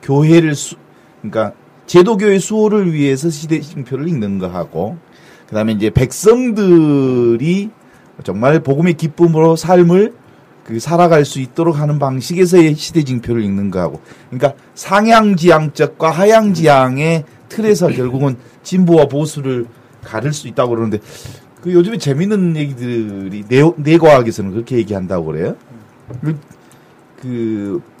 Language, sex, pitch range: Korean, male, 125-175 Hz